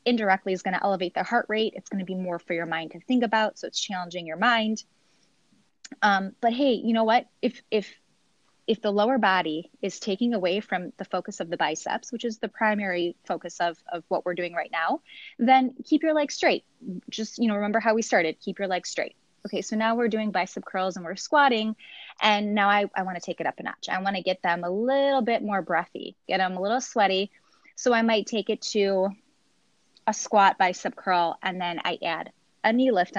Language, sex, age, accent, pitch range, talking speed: English, female, 20-39, American, 190-240 Hz, 230 wpm